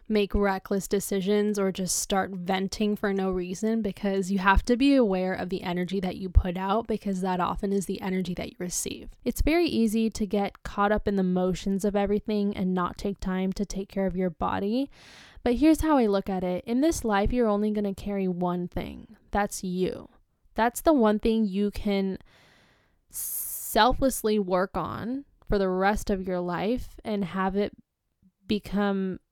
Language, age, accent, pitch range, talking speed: English, 10-29, American, 190-230 Hz, 190 wpm